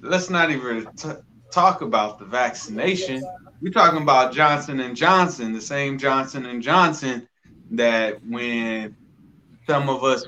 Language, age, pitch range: English, 20-39, 120-185 Hz